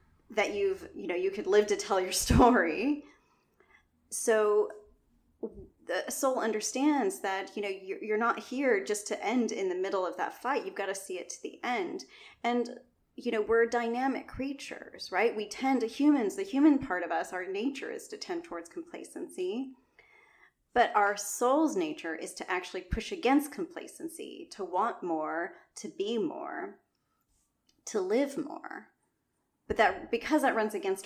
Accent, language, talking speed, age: American, English, 165 wpm, 30-49